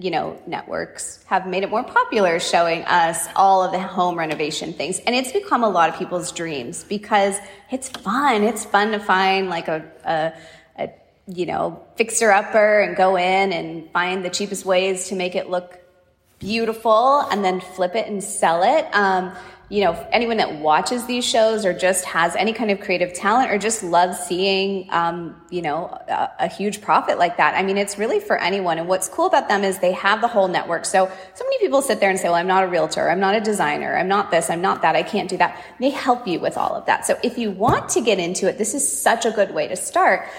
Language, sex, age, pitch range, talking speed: English, female, 20-39, 180-220 Hz, 230 wpm